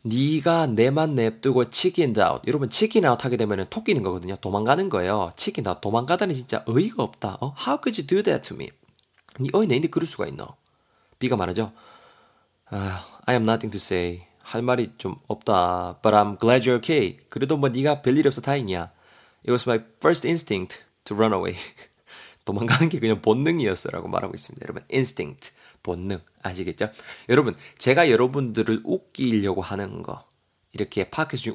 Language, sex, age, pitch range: Korean, male, 20-39, 100-135 Hz